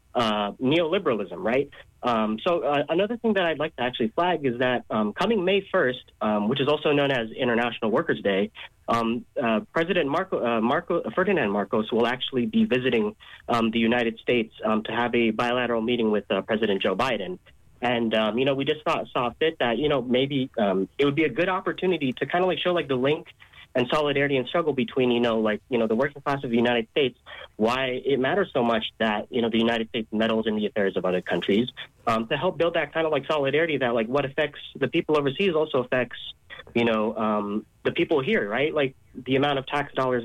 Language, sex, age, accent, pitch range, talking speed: English, male, 30-49, American, 110-140 Hz, 225 wpm